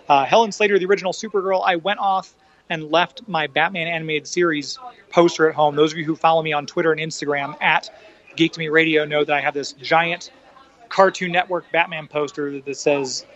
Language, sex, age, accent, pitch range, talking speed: English, male, 30-49, American, 150-180 Hz, 200 wpm